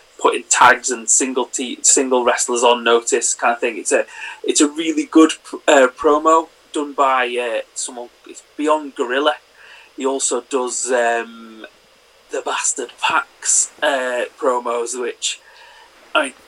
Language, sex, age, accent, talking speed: English, male, 30-49, British, 145 wpm